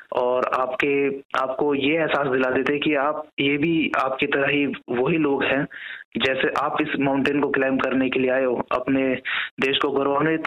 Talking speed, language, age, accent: 185 wpm, Hindi, 20-39, native